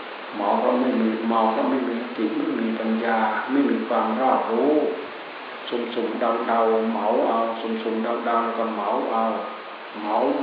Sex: male